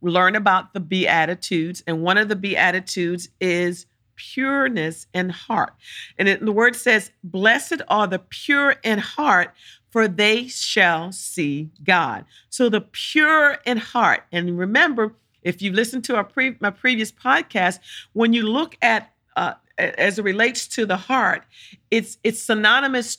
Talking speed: 155 wpm